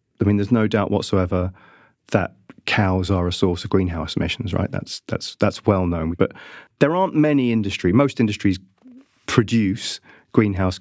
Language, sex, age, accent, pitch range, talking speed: English, male, 30-49, British, 95-110 Hz, 160 wpm